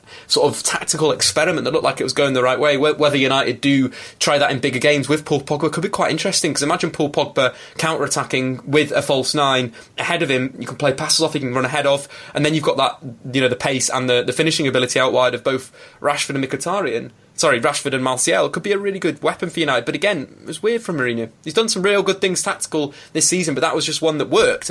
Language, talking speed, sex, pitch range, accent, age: English, 255 wpm, male, 130-170 Hz, British, 20-39